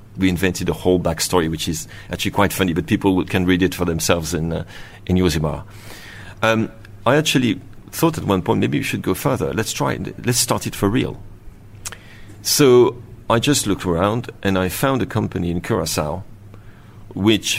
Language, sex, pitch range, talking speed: Danish, male, 95-115 Hz, 185 wpm